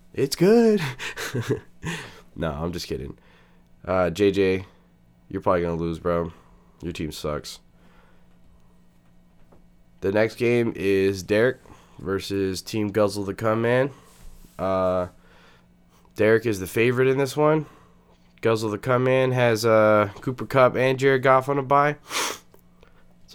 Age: 20-39